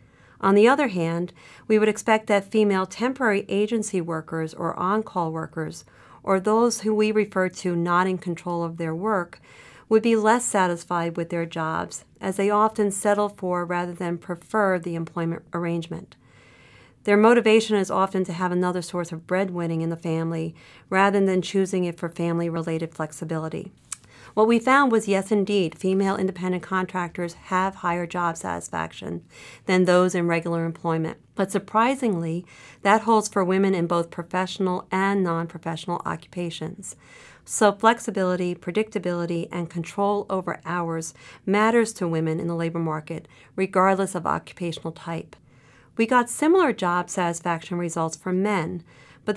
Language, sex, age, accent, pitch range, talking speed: English, female, 40-59, American, 170-205 Hz, 150 wpm